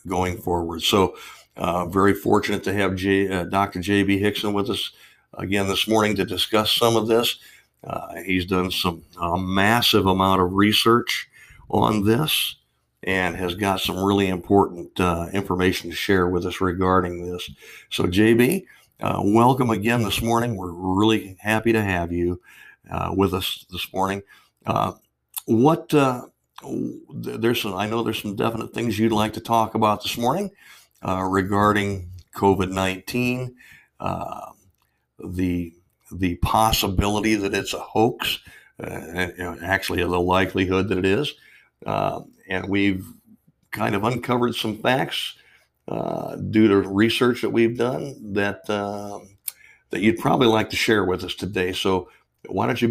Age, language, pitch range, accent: 60-79, English, 90-110 Hz, American